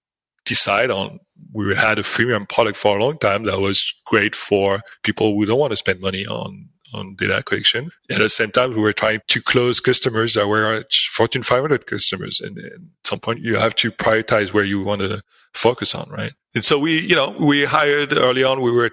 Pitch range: 105-120 Hz